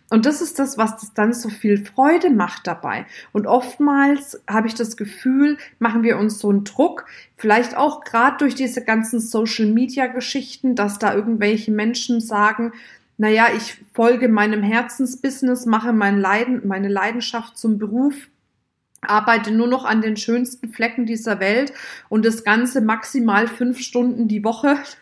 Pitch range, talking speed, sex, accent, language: 210-250 Hz, 155 wpm, female, German, German